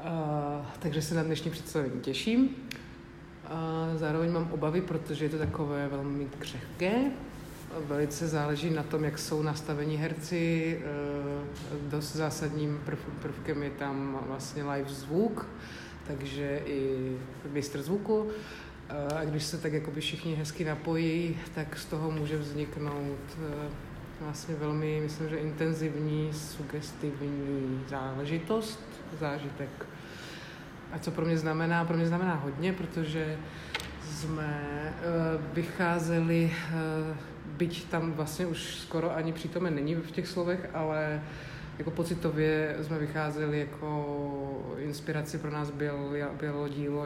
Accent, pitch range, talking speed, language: native, 145-165 Hz, 115 wpm, Czech